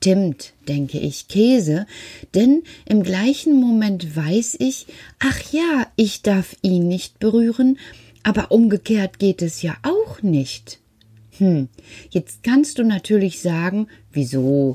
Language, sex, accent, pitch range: German, female, German, 150-235 Hz